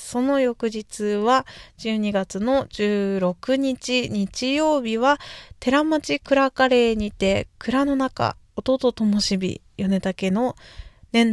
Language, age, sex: Japanese, 20-39, female